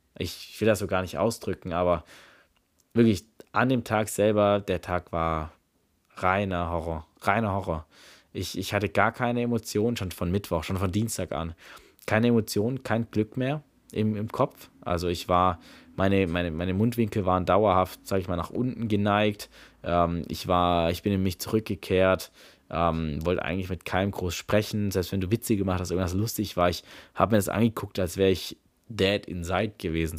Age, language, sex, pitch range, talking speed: 20-39, German, male, 90-105 Hz, 180 wpm